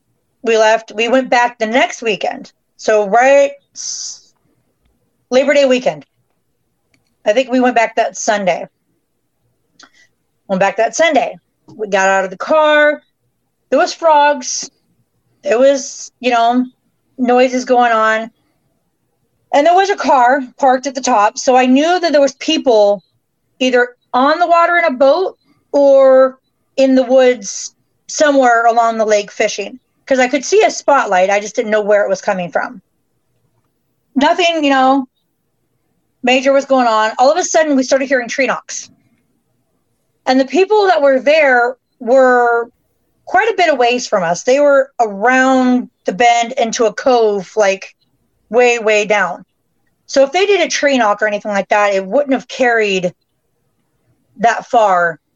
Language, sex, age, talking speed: English, female, 40-59, 155 wpm